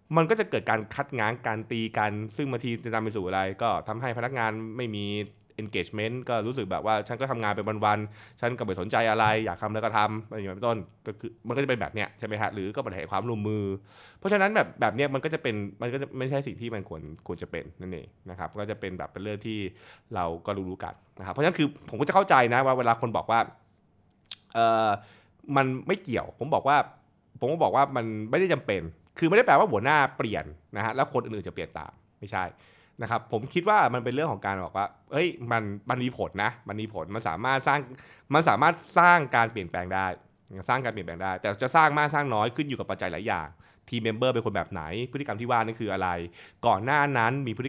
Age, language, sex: 20-39, Thai, male